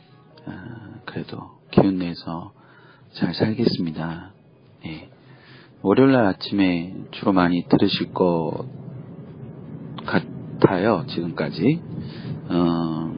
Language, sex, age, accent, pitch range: Korean, male, 40-59, native, 85-110 Hz